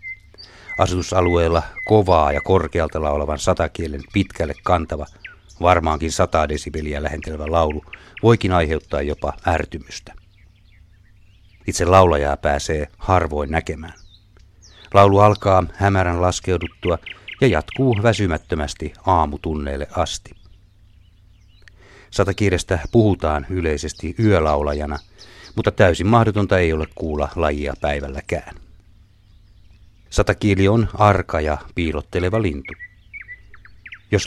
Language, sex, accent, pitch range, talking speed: Finnish, male, native, 80-100 Hz, 90 wpm